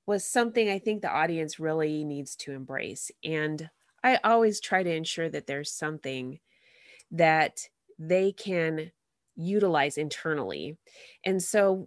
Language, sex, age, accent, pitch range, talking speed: English, female, 30-49, American, 160-225 Hz, 130 wpm